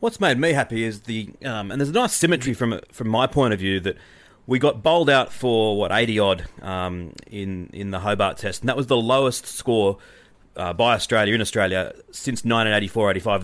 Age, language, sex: 30-49, English, male